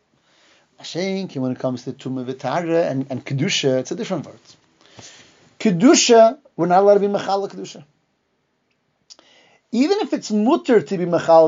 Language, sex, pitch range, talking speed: English, male, 160-230 Hz, 140 wpm